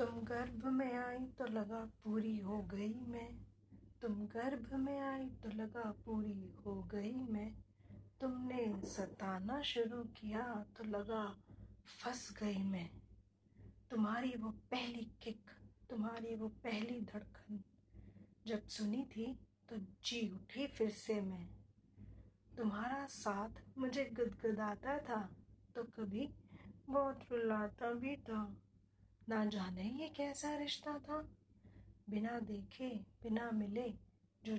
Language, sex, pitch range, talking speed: Hindi, female, 190-245 Hz, 120 wpm